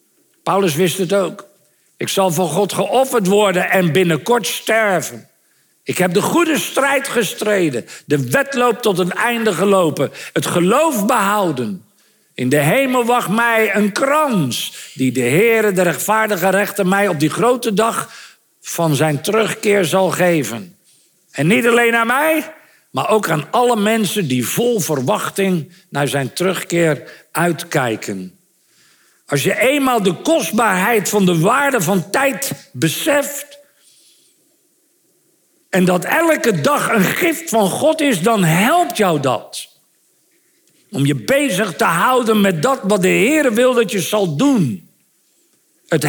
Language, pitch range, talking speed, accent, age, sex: Dutch, 180-255 Hz, 140 wpm, Dutch, 50-69, male